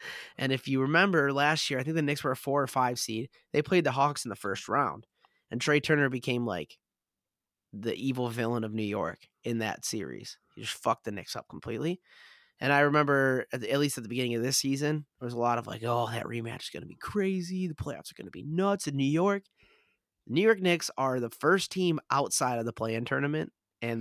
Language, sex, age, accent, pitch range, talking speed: English, male, 20-39, American, 120-150 Hz, 235 wpm